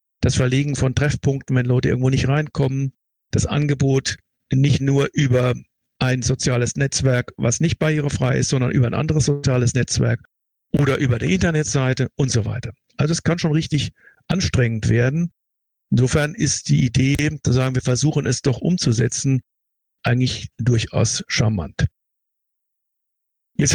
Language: German